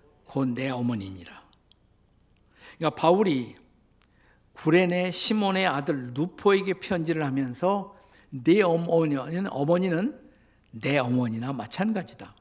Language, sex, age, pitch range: Korean, male, 50-69, 120-170 Hz